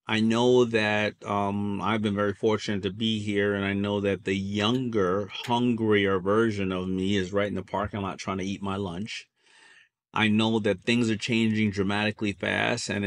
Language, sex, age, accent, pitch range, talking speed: English, male, 30-49, American, 100-115 Hz, 190 wpm